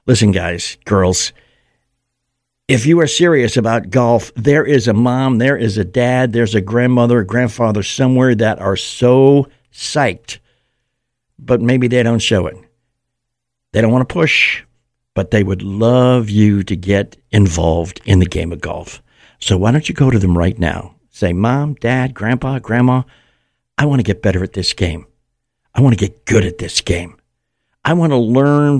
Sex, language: male, English